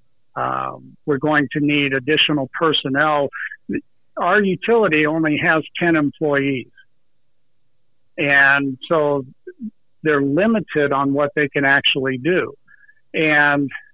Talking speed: 105 wpm